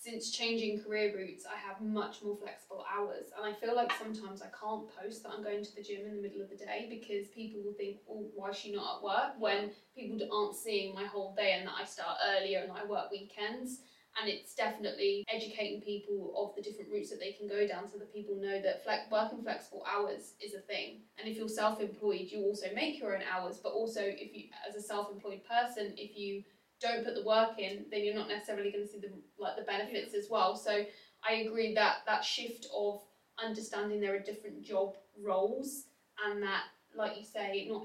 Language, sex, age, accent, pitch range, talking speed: English, female, 10-29, British, 200-220 Hz, 220 wpm